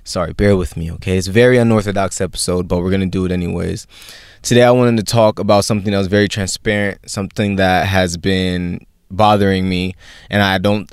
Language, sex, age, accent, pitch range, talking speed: English, male, 20-39, American, 95-115 Hz, 200 wpm